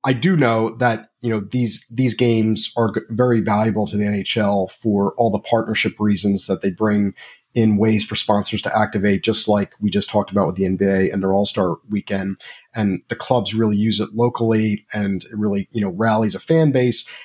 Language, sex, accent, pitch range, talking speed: English, male, American, 100-120 Hz, 205 wpm